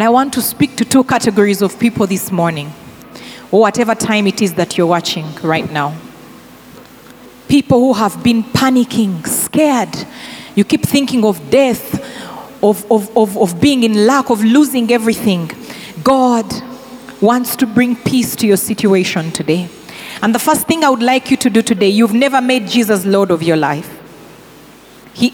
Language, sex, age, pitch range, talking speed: English, female, 30-49, 225-290 Hz, 170 wpm